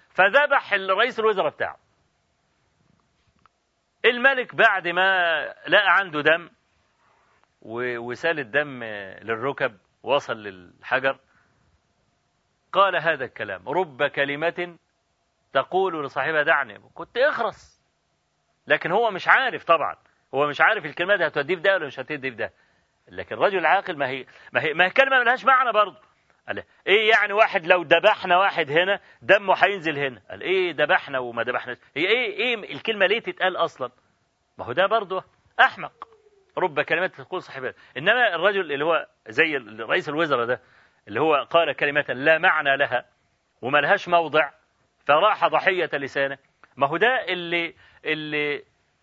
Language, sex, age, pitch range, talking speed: Arabic, male, 40-59, 145-200 Hz, 135 wpm